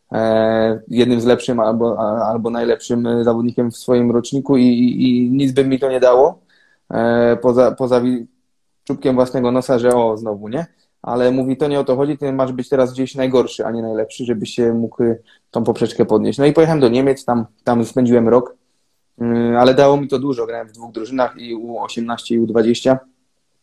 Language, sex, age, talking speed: Polish, male, 20-39, 190 wpm